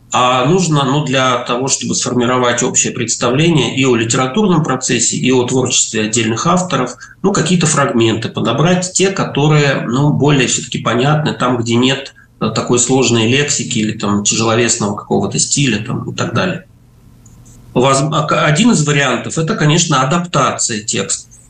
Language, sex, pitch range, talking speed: Russian, male, 125-160 Hz, 140 wpm